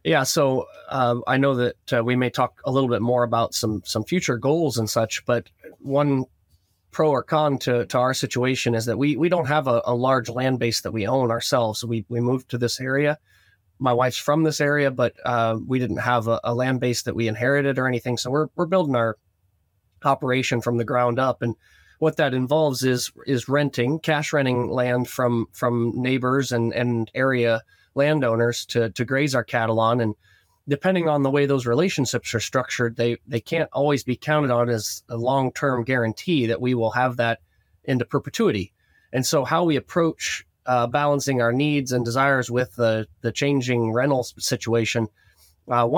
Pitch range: 115-140 Hz